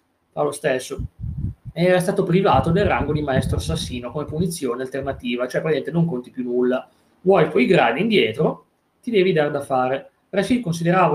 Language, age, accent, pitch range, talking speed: Italian, 30-49, native, 135-190 Hz, 165 wpm